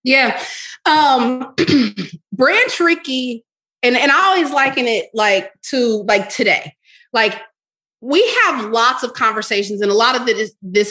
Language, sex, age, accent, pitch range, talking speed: English, female, 30-49, American, 195-245 Hz, 150 wpm